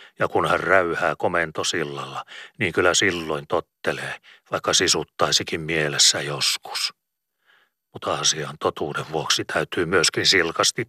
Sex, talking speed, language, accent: male, 110 wpm, Finnish, native